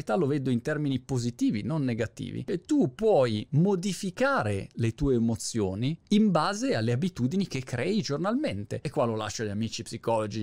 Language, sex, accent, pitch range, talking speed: Italian, male, native, 115-155 Hz, 160 wpm